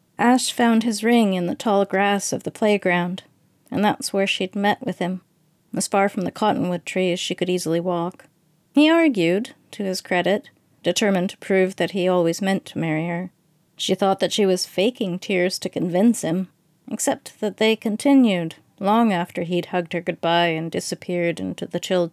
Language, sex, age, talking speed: English, female, 40-59, 185 wpm